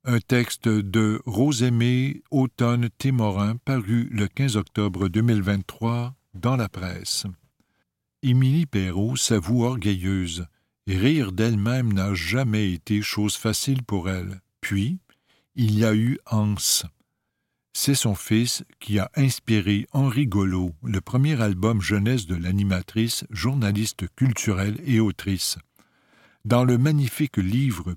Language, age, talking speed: French, 60-79, 120 wpm